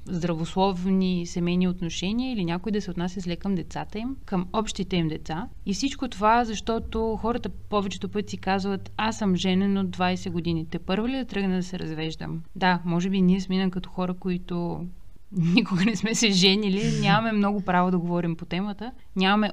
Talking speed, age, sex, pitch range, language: 180 wpm, 30-49, female, 180-205 Hz, Bulgarian